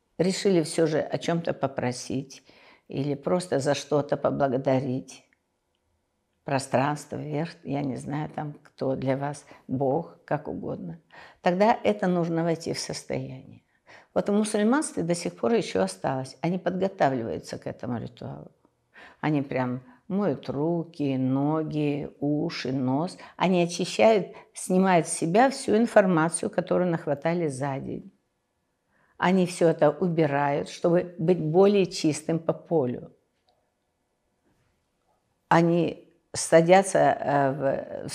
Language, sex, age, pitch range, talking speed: Russian, female, 60-79, 140-175 Hz, 115 wpm